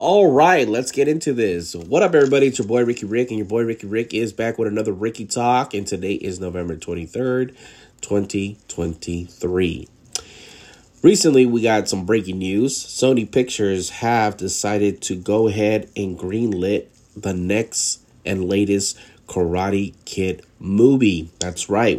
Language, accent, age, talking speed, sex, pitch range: English, American, 30-49, 145 wpm, male, 95-120 Hz